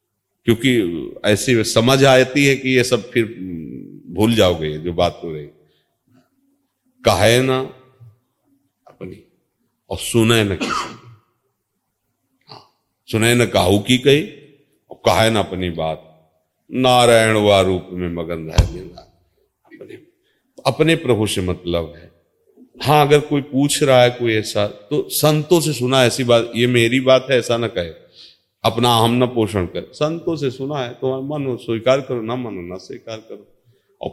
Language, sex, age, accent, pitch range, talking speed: Hindi, male, 40-59, native, 105-130 Hz, 150 wpm